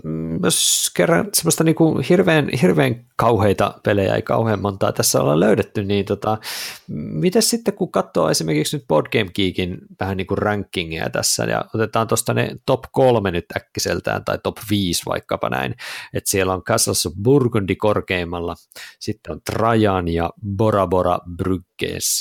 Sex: male